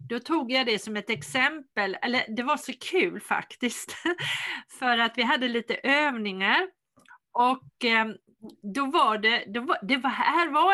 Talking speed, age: 135 wpm, 40-59